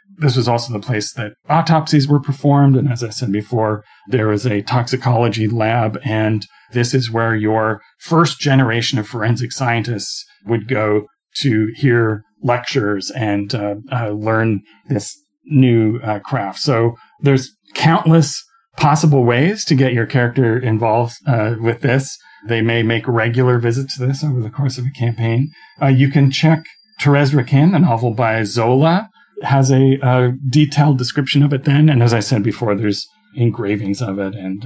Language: English